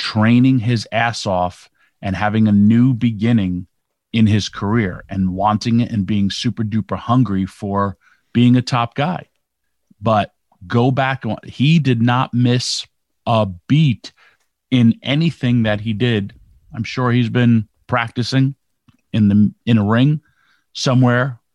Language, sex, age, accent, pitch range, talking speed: English, male, 40-59, American, 105-125 Hz, 140 wpm